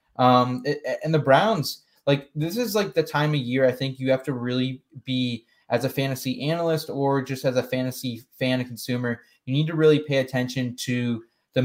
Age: 20-39